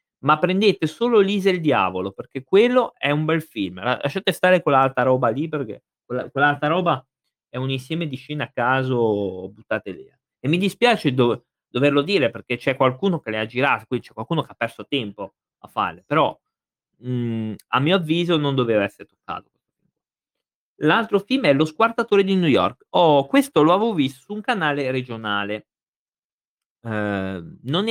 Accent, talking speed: native, 170 wpm